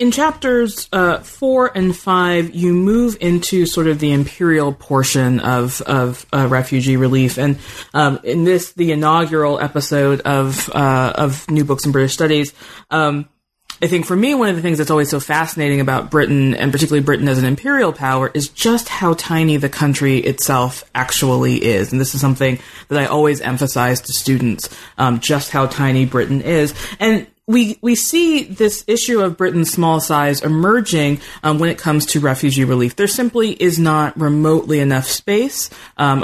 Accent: American